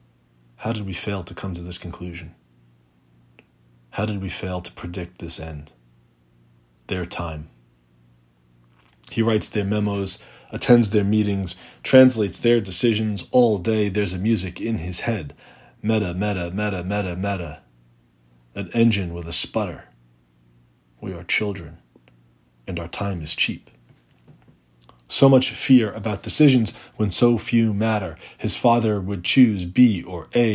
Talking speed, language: 140 wpm, English